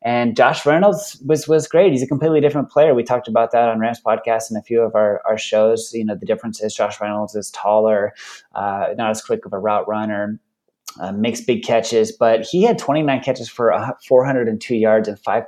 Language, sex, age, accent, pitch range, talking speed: English, male, 20-39, American, 110-125 Hz, 215 wpm